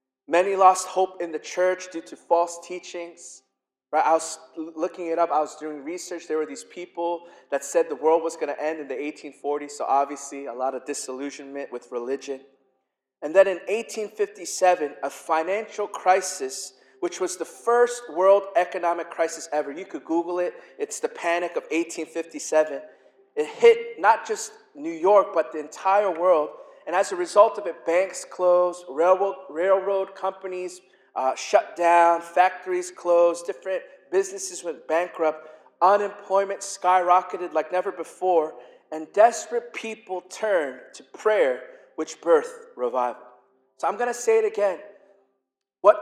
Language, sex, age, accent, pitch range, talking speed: English, male, 30-49, American, 155-205 Hz, 155 wpm